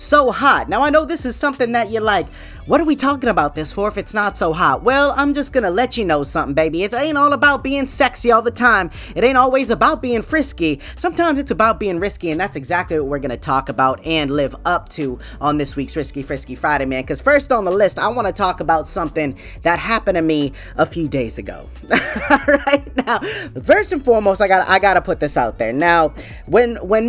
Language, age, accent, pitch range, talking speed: English, 20-39, American, 160-250 Hz, 235 wpm